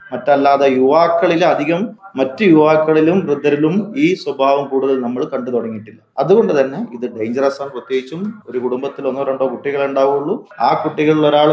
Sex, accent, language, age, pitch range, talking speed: male, native, Malayalam, 30-49, 130-155 Hz, 125 wpm